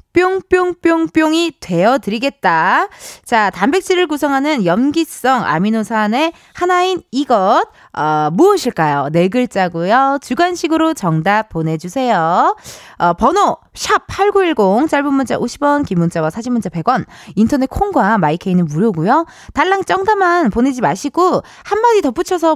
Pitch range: 205-335 Hz